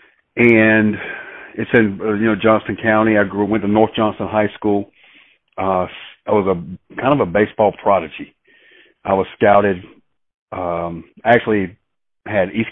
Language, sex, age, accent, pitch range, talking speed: English, male, 40-59, American, 95-105 Hz, 150 wpm